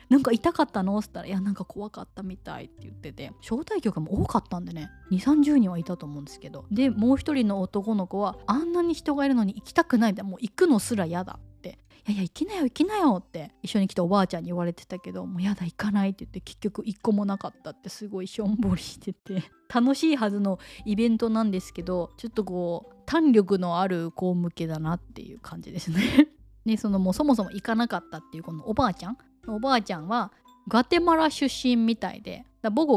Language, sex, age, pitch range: Japanese, female, 20-39, 185-245 Hz